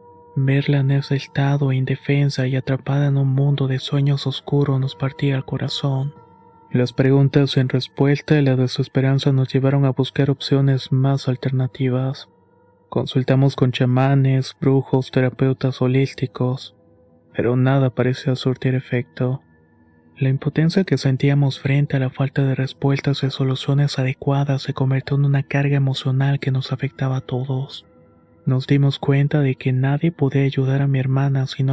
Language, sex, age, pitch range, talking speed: Spanish, male, 30-49, 130-140 Hz, 150 wpm